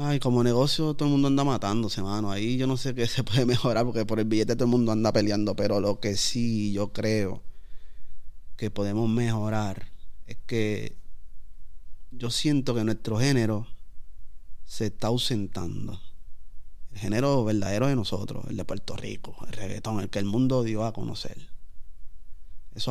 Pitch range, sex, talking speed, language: 100-120 Hz, male, 170 wpm, Spanish